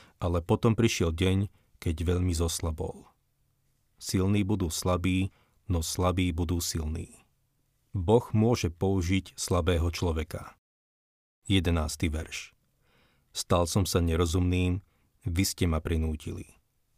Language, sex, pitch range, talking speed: Slovak, male, 90-105 Hz, 105 wpm